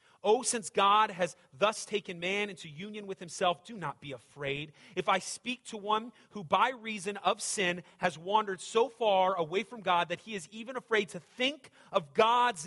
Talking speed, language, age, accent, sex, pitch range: 195 wpm, English, 30-49, American, male, 145-200 Hz